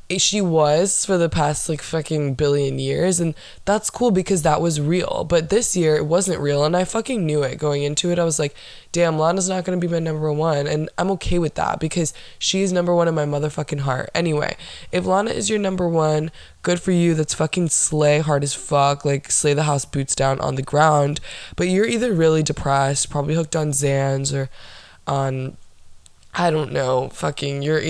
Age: 20-39